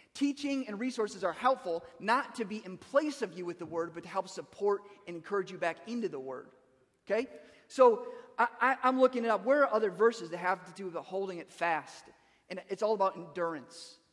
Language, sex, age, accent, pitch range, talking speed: English, male, 30-49, American, 175-230 Hz, 215 wpm